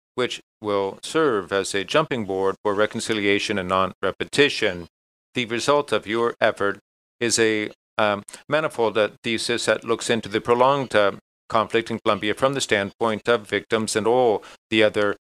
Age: 40-59